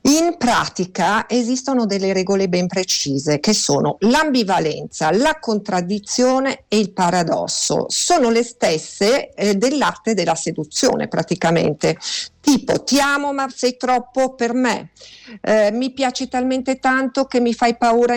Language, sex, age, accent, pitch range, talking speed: Italian, female, 50-69, native, 190-240 Hz, 130 wpm